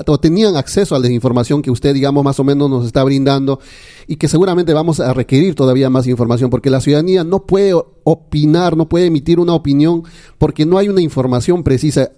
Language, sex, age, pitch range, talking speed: Spanish, male, 40-59, 130-165 Hz, 200 wpm